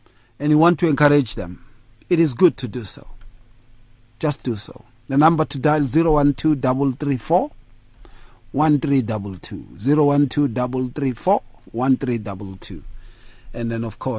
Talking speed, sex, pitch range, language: 90 wpm, male, 115-170 Hz, English